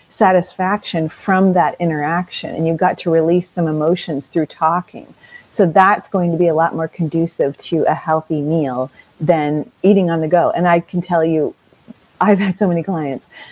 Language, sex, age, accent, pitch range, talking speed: English, female, 30-49, American, 165-190 Hz, 180 wpm